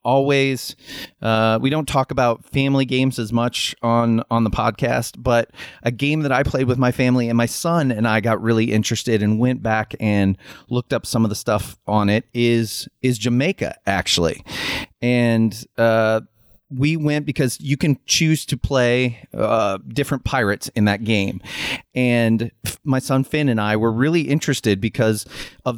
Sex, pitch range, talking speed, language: male, 105-125 Hz, 170 wpm, English